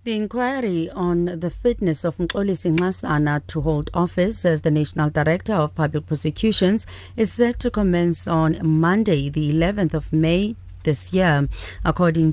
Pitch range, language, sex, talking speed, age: 150-185 Hz, English, female, 155 wpm, 40-59